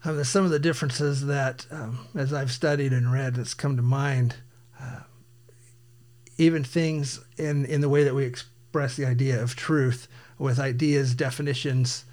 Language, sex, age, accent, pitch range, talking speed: English, male, 50-69, American, 120-145 Hz, 160 wpm